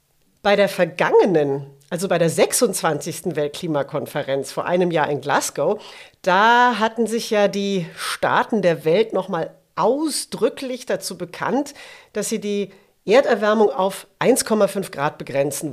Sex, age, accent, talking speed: female, 40-59, German, 125 wpm